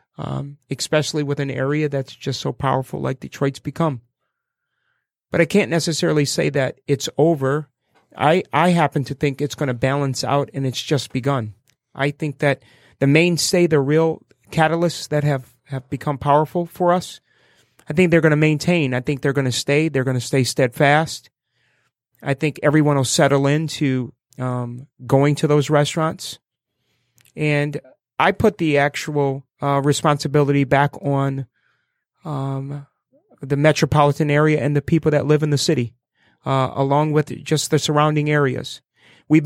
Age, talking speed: 30-49, 160 wpm